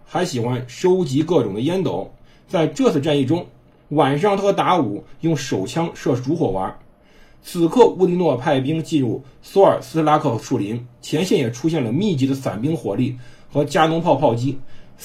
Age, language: 50-69, Chinese